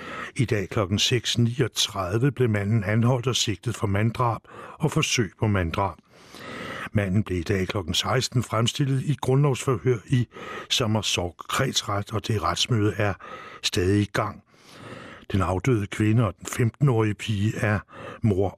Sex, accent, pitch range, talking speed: male, Danish, 100-130 Hz, 140 wpm